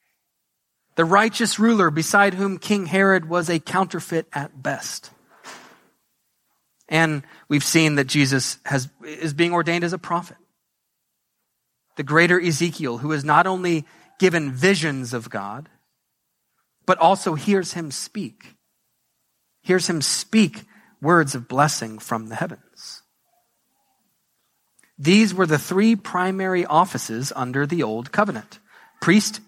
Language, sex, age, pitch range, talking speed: English, male, 30-49, 155-205 Hz, 120 wpm